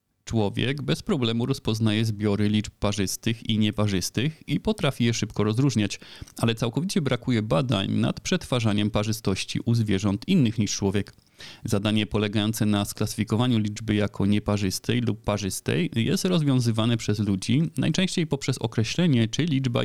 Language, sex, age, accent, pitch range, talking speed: Polish, male, 30-49, native, 105-130 Hz, 135 wpm